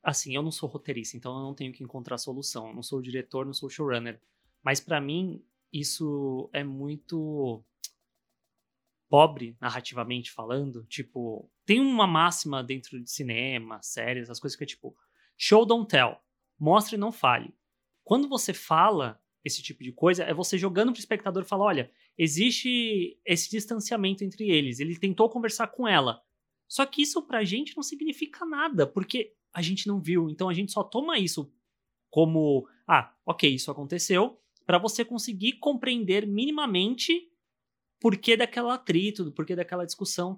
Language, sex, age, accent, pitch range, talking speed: Portuguese, male, 20-39, Brazilian, 145-220 Hz, 170 wpm